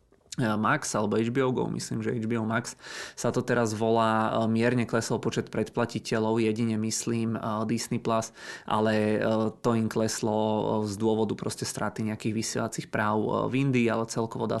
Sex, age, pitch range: male, 20-39, 110-120 Hz